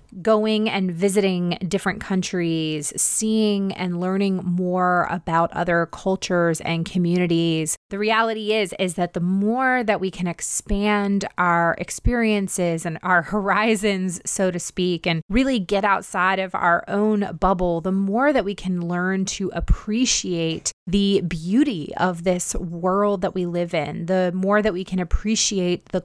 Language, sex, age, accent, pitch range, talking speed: English, female, 20-39, American, 175-215 Hz, 150 wpm